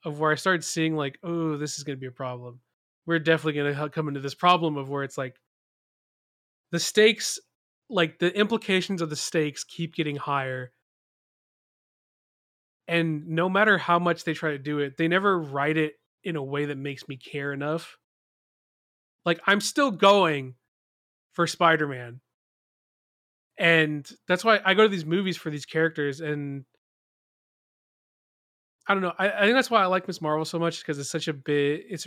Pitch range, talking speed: 145-185 Hz, 180 wpm